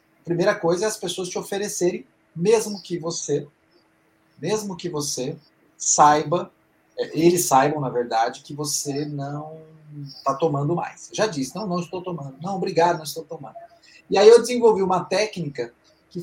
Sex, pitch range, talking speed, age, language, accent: male, 150-195 Hz, 150 wpm, 40-59, Portuguese, Brazilian